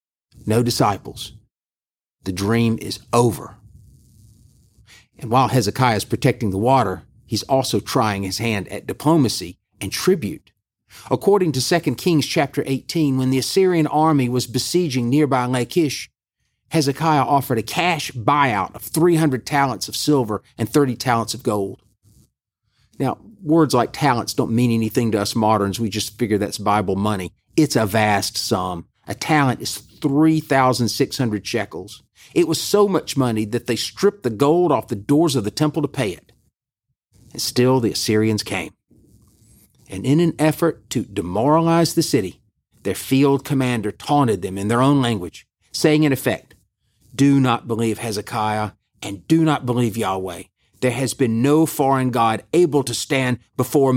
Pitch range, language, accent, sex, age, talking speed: 110-140 Hz, English, American, male, 40-59, 155 wpm